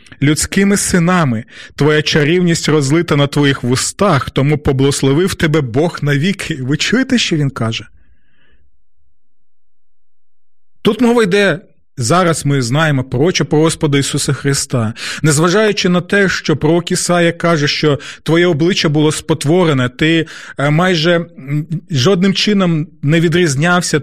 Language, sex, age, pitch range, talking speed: Ukrainian, male, 30-49, 140-175 Hz, 115 wpm